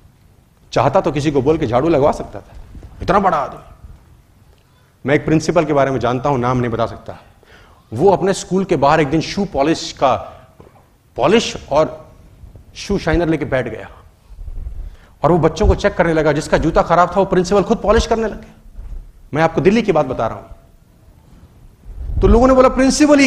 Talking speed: 185 wpm